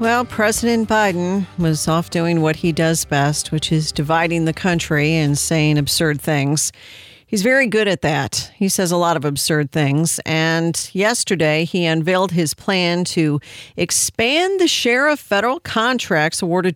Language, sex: English, female